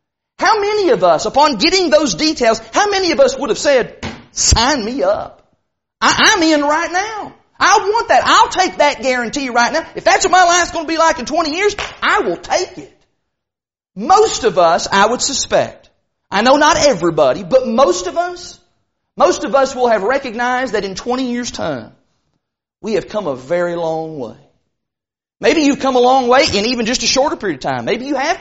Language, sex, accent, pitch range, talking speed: English, male, American, 235-325 Hz, 205 wpm